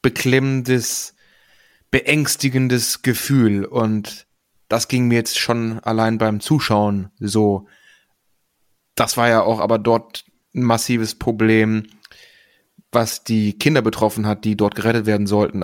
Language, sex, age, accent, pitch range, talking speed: German, male, 30-49, German, 110-125 Hz, 125 wpm